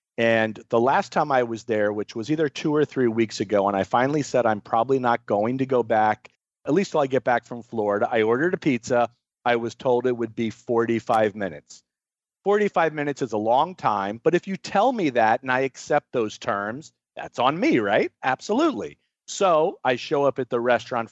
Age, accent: 40-59, American